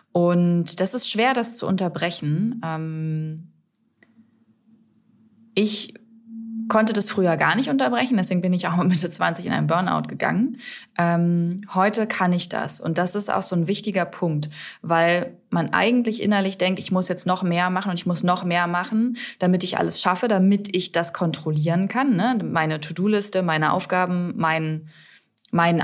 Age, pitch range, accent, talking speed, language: 20-39, 170-220 Hz, German, 160 wpm, German